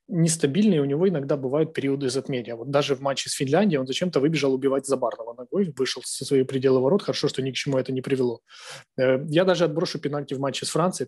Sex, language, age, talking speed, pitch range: male, Ukrainian, 20-39, 215 wpm, 135-165 Hz